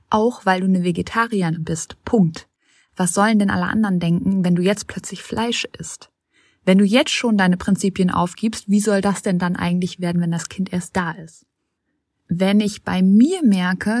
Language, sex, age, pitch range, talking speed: German, female, 20-39, 175-215 Hz, 190 wpm